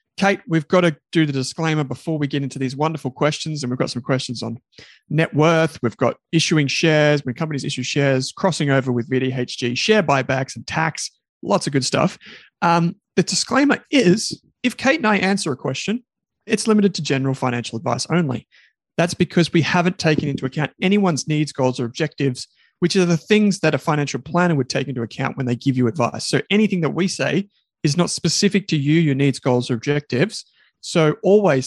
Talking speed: 200 wpm